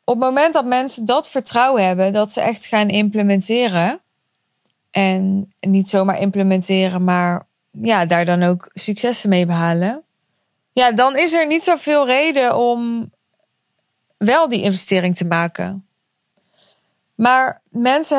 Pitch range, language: 195-245 Hz, Dutch